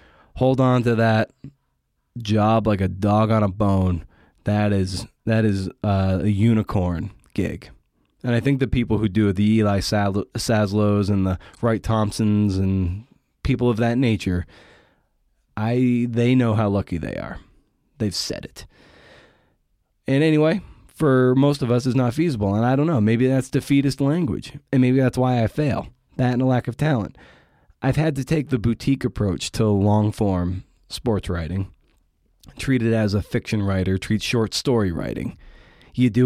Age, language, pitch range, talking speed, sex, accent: 20-39, English, 95-125 Hz, 165 wpm, male, American